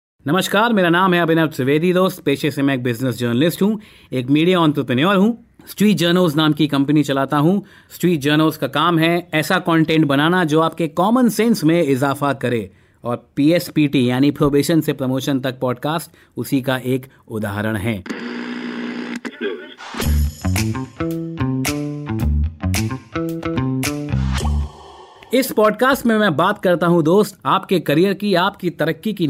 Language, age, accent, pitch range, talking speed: Hindi, 30-49, native, 130-190 Hz, 135 wpm